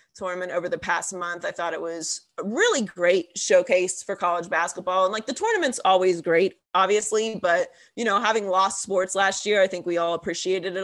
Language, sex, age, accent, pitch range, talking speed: English, female, 30-49, American, 170-200 Hz, 205 wpm